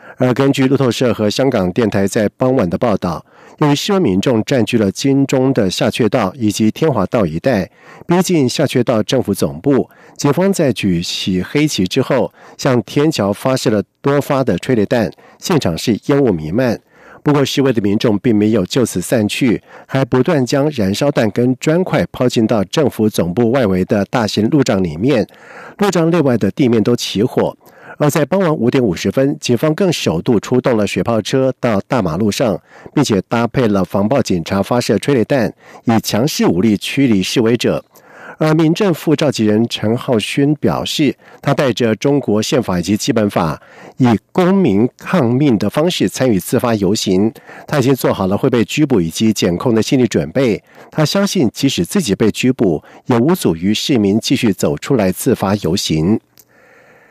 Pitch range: 105-145 Hz